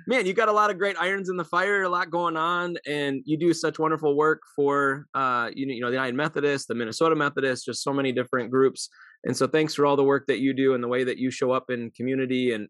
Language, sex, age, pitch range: English, male, 20-39, 125-160 Hz